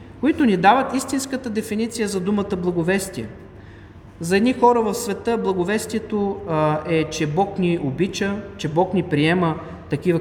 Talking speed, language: 140 wpm, Bulgarian